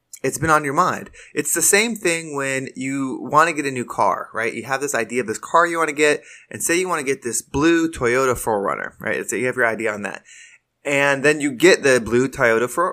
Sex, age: male, 20-39